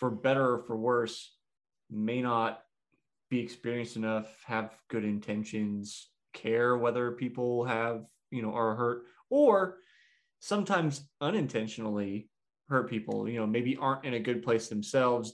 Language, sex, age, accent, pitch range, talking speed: English, male, 20-39, American, 115-135 Hz, 135 wpm